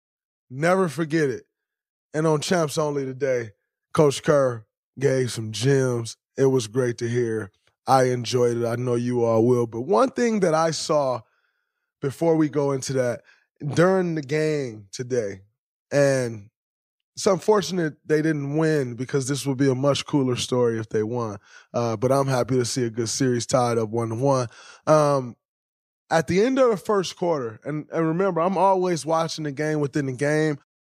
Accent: American